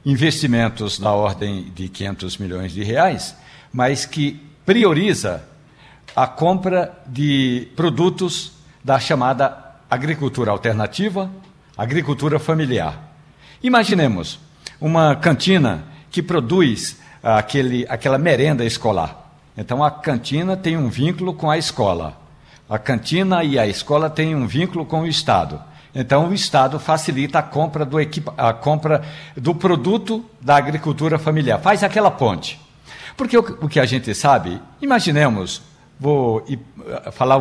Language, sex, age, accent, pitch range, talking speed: Portuguese, male, 60-79, Brazilian, 125-160 Hz, 120 wpm